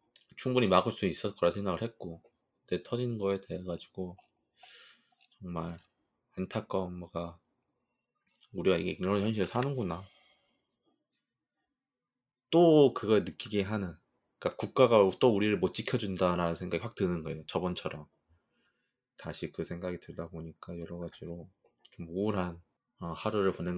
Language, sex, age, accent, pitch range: Korean, male, 20-39, native, 85-120 Hz